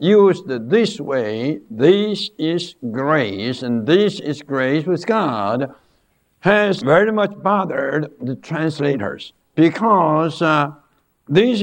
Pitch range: 145-205 Hz